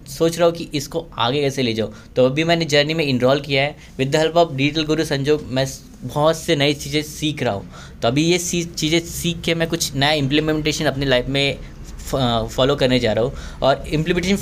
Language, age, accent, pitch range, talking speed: Hindi, 10-29, native, 135-165 Hz, 215 wpm